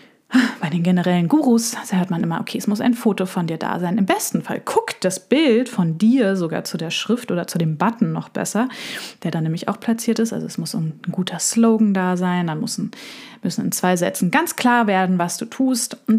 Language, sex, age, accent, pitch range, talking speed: German, female, 20-39, German, 180-225 Hz, 230 wpm